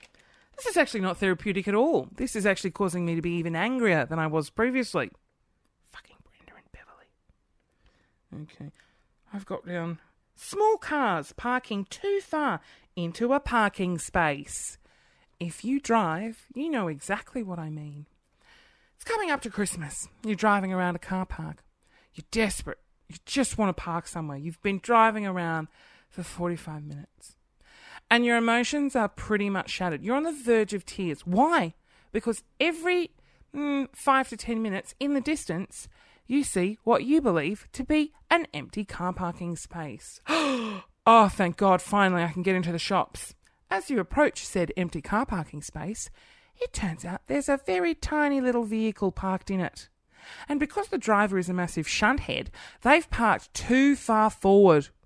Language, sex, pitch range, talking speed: English, female, 175-250 Hz, 165 wpm